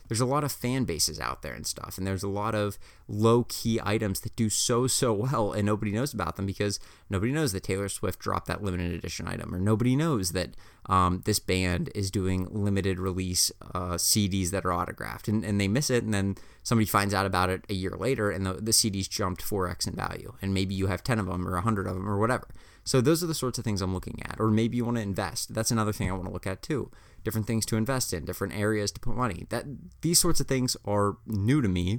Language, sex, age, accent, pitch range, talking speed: English, male, 20-39, American, 95-115 Hz, 250 wpm